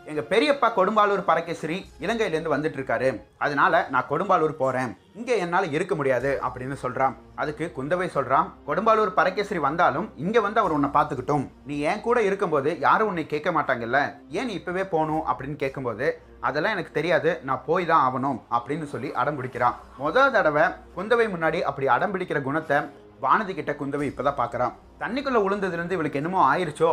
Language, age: Tamil, 30-49